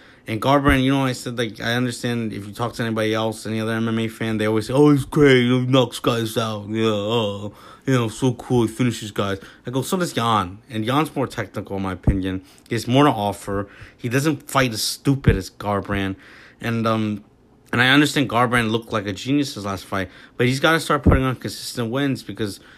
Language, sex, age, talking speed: English, male, 30-49, 220 wpm